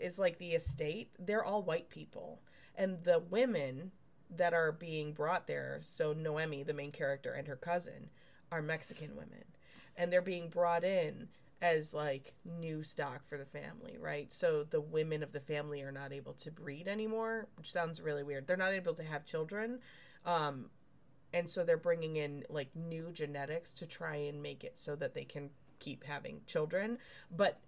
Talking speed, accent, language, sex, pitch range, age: 180 wpm, American, English, female, 145-190 Hz, 20-39